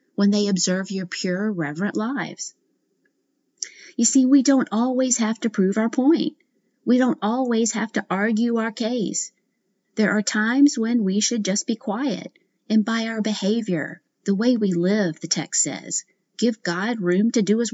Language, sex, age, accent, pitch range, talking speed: English, female, 40-59, American, 185-235 Hz, 175 wpm